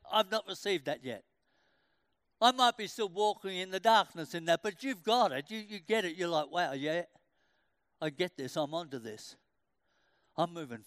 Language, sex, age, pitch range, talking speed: English, male, 60-79, 170-210 Hz, 195 wpm